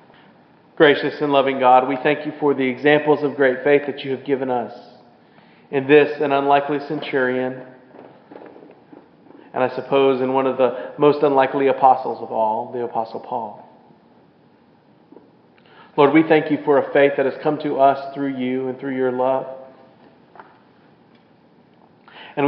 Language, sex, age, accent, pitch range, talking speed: English, male, 40-59, American, 120-140 Hz, 150 wpm